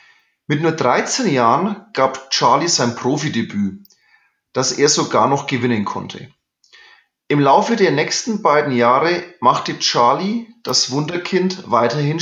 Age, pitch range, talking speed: 30-49, 140-200 Hz, 125 wpm